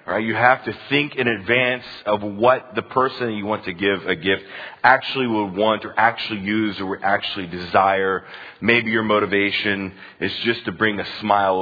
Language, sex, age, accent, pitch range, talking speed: English, male, 40-59, American, 100-125 Hz, 185 wpm